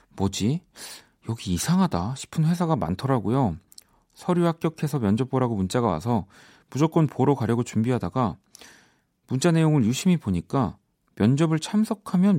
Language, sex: Korean, male